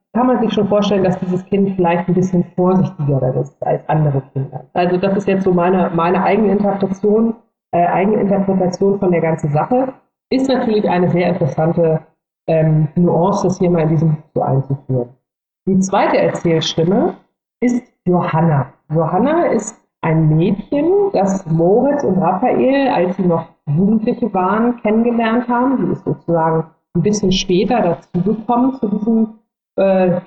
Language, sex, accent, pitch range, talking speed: German, female, German, 170-220 Hz, 150 wpm